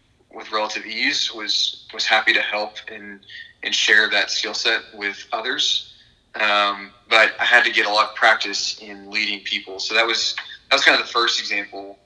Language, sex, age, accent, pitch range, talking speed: English, male, 20-39, American, 100-110 Hz, 195 wpm